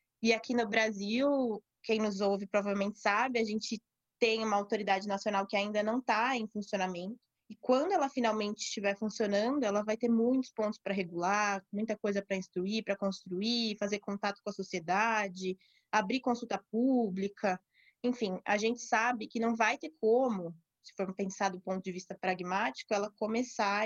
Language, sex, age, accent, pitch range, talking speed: Portuguese, female, 20-39, Brazilian, 195-230 Hz, 170 wpm